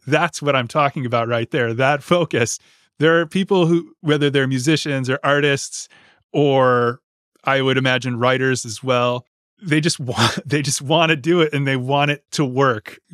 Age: 30-49